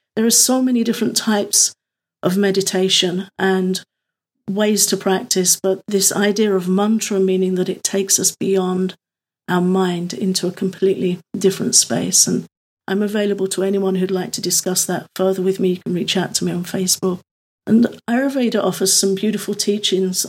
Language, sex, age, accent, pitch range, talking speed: English, female, 50-69, British, 185-200 Hz, 170 wpm